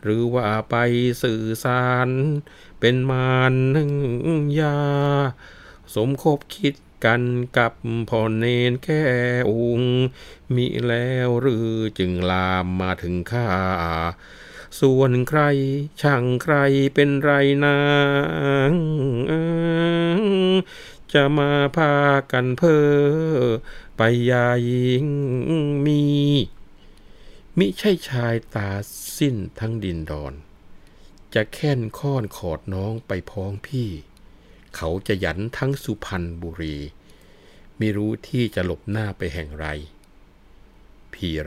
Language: Thai